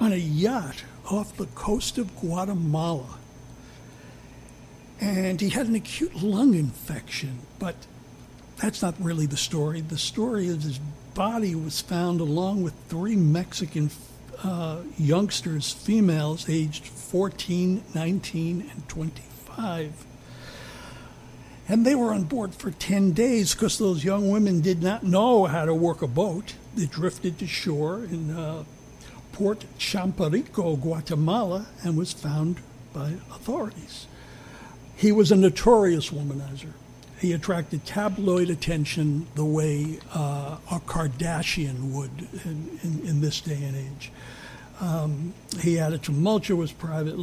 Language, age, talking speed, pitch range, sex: English, 60-79, 130 wpm, 150-190 Hz, male